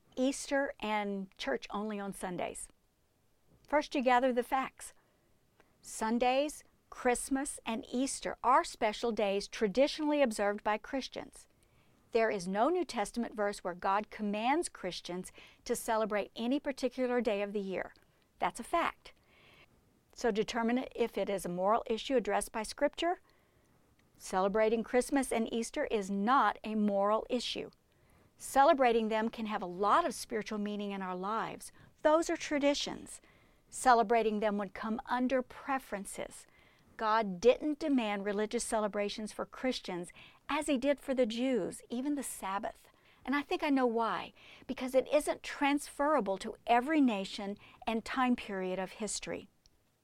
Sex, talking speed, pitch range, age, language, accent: female, 140 wpm, 205-270 Hz, 50-69, English, American